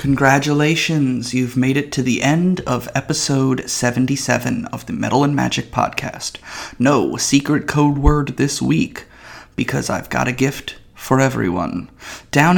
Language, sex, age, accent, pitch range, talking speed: English, male, 30-49, American, 120-150 Hz, 145 wpm